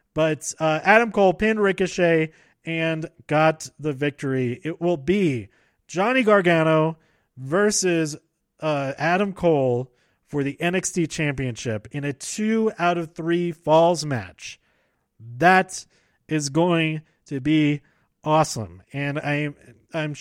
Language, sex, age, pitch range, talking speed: English, male, 30-49, 130-170 Hz, 115 wpm